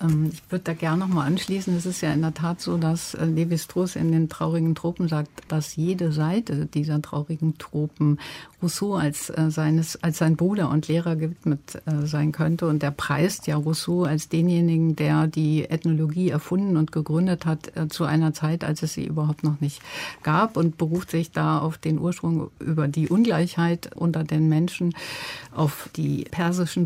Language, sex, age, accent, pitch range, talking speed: German, female, 60-79, German, 155-175 Hz, 180 wpm